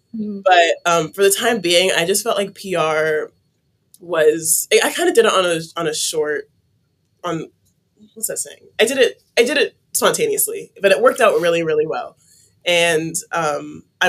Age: 20-39